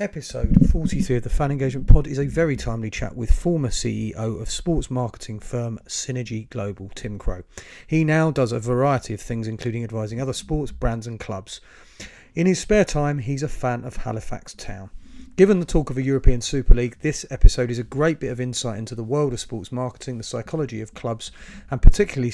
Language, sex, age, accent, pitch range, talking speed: English, male, 30-49, British, 115-150 Hz, 200 wpm